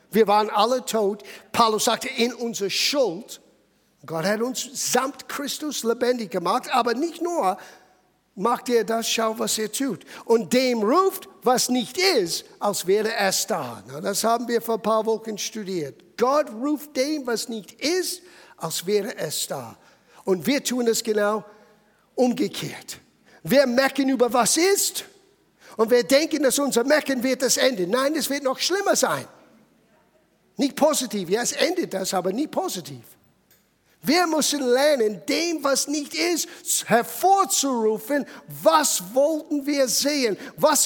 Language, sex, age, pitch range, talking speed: German, male, 50-69, 200-275 Hz, 155 wpm